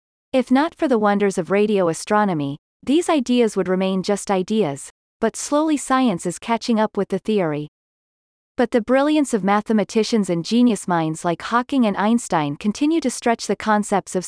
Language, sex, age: English, female, 30-49